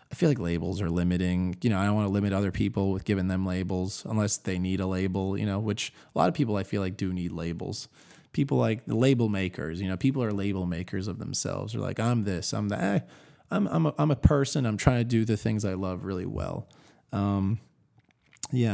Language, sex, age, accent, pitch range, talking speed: English, male, 20-39, American, 95-125 Hz, 235 wpm